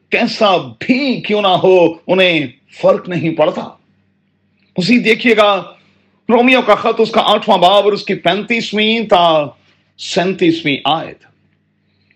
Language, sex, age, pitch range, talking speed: Urdu, male, 40-59, 160-205 Hz, 125 wpm